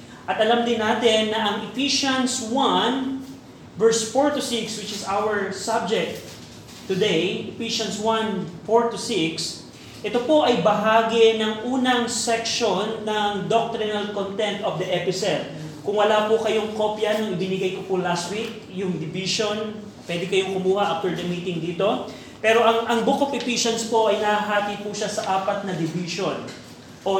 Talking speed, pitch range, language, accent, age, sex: 155 wpm, 185-225 Hz, Filipino, native, 30-49, male